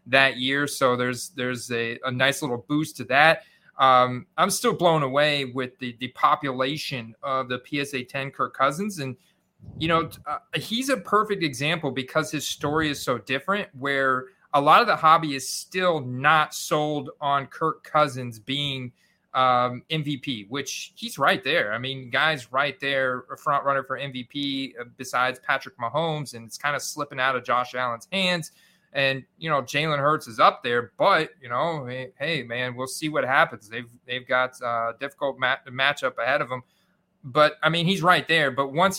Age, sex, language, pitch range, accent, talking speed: 30-49, male, English, 130-160 Hz, American, 185 wpm